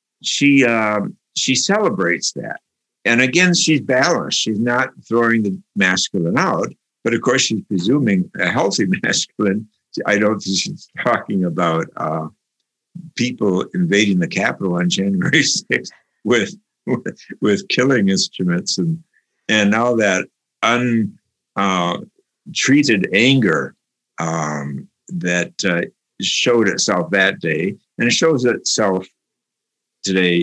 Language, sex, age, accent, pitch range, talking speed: English, male, 60-79, American, 90-135 Hz, 120 wpm